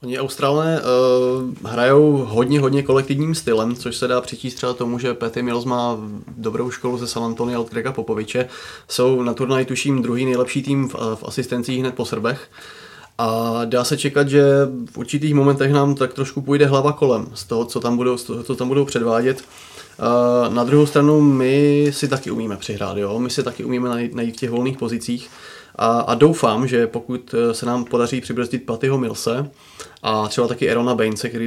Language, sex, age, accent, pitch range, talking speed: Czech, male, 20-39, native, 120-140 Hz, 185 wpm